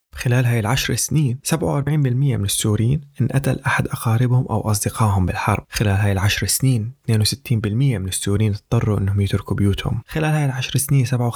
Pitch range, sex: 105-130 Hz, male